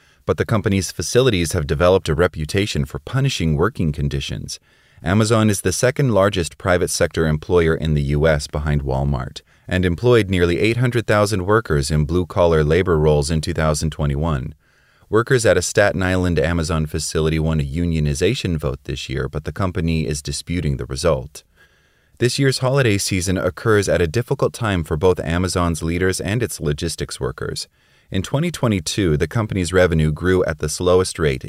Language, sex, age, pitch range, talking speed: English, male, 30-49, 75-95 Hz, 160 wpm